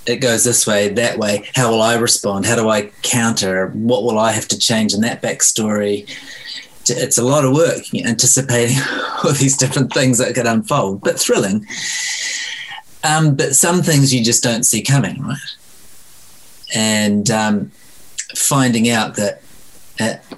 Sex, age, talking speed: male, 30-49, 160 wpm